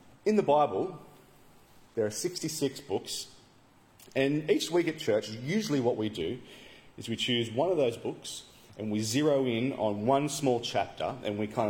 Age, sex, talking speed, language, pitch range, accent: 30-49, male, 175 wpm, English, 105-140 Hz, Australian